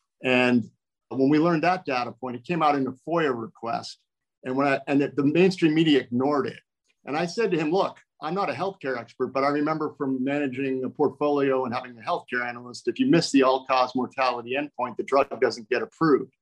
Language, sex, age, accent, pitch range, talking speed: English, male, 50-69, American, 120-140 Hz, 215 wpm